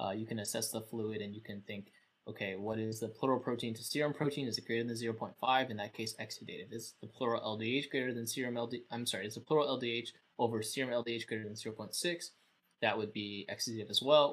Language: English